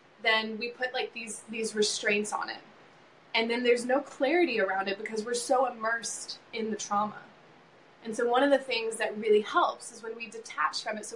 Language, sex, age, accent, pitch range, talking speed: English, female, 20-39, American, 210-250 Hz, 210 wpm